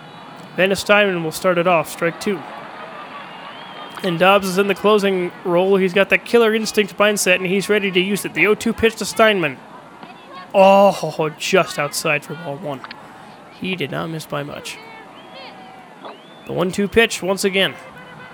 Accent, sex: American, male